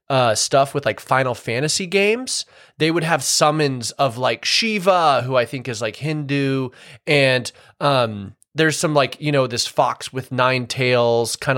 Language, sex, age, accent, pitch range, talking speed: English, male, 20-39, American, 115-150 Hz, 170 wpm